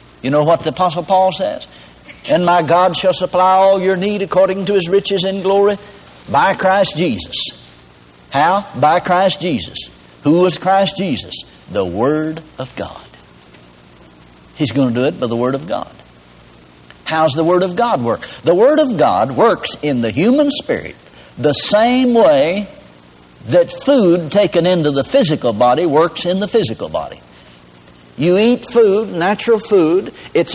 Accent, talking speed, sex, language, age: American, 160 wpm, male, English, 60-79